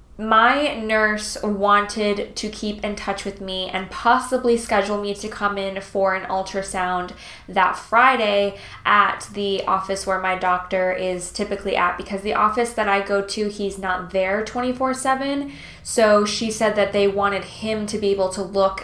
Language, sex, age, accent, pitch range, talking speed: English, female, 10-29, American, 190-225 Hz, 170 wpm